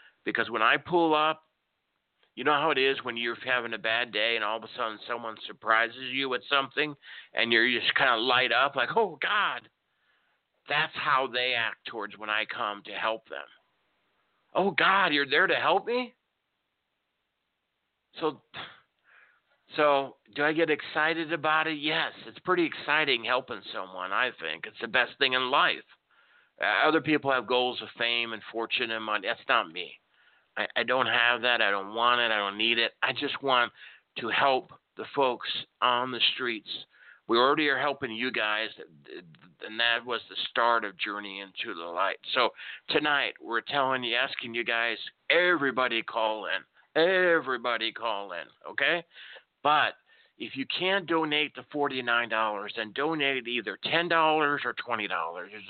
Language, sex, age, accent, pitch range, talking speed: English, male, 50-69, American, 115-155 Hz, 170 wpm